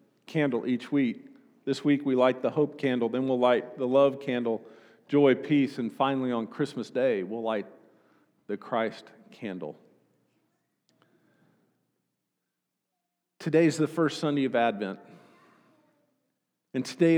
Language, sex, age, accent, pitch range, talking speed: English, male, 50-69, American, 125-155 Hz, 125 wpm